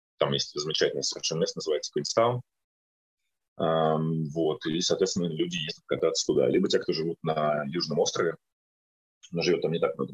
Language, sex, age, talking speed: Russian, male, 30-49, 160 wpm